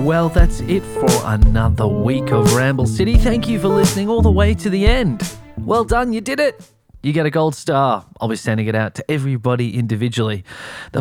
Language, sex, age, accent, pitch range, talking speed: English, male, 20-39, Australian, 110-155 Hz, 205 wpm